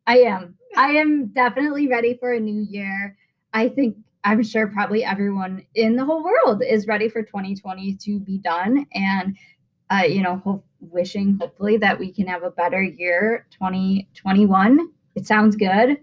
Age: 10-29